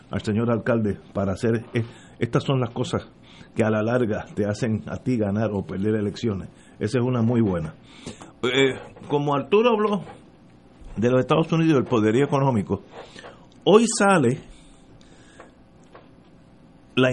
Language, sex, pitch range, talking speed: Spanish, male, 110-160 Hz, 140 wpm